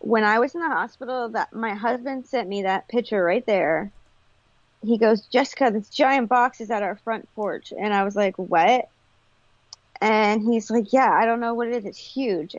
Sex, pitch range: female, 200-245 Hz